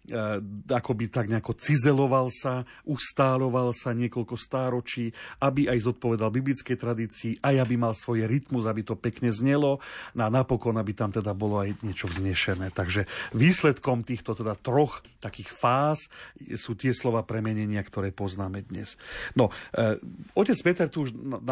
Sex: male